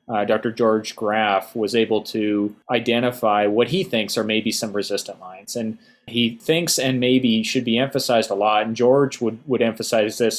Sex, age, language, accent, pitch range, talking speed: male, 30-49, English, American, 105-125 Hz, 185 wpm